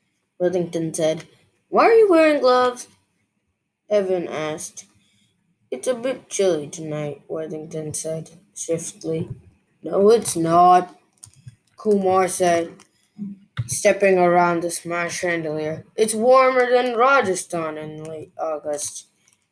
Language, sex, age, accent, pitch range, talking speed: English, female, 20-39, American, 170-225 Hz, 105 wpm